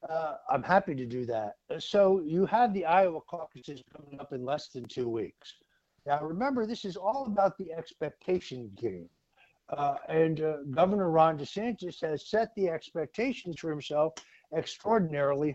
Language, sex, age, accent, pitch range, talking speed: English, male, 60-79, American, 150-195 Hz, 160 wpm